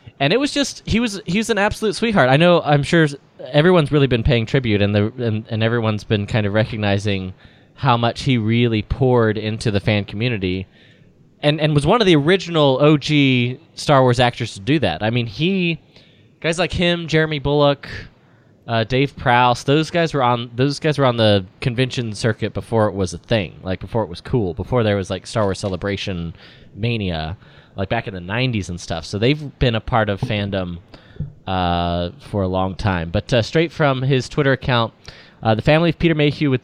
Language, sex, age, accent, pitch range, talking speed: English, male, 20-39, American, 105-145 Hz, 205 wpm